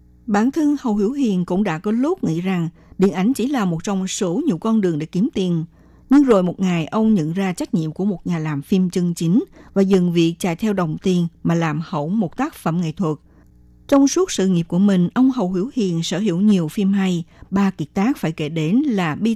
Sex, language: female, Vietnamese